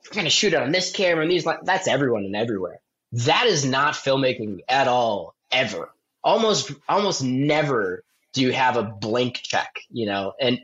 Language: English